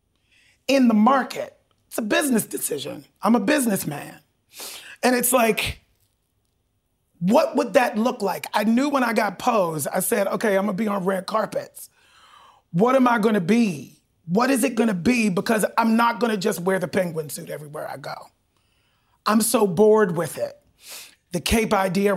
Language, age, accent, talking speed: English, 30-49, American, 170 wpm